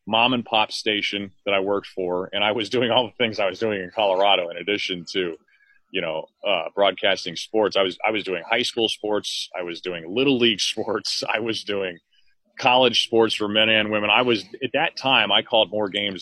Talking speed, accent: 220 wpm, American